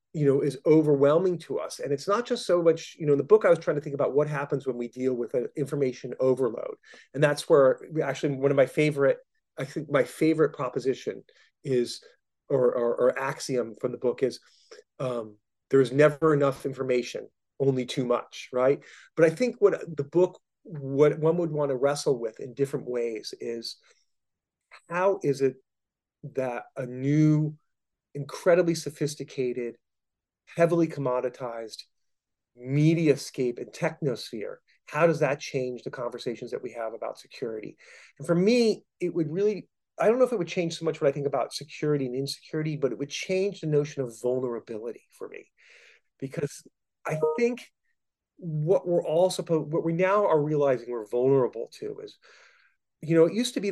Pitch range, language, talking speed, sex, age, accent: 135-185 Hz, English, 175 wpm, male, 30-49, American